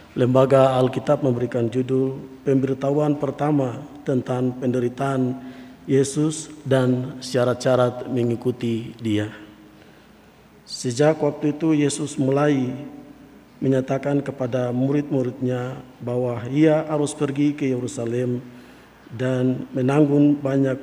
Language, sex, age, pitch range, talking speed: Indonesian, male, 50-69, 125-145 Hz, 85 wpm